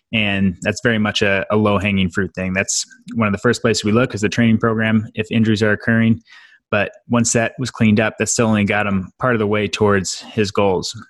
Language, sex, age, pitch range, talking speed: English, male, 20-39, 100-115 Hz, 235 wpm